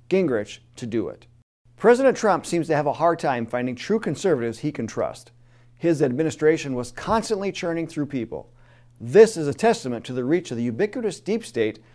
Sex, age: male, 40-59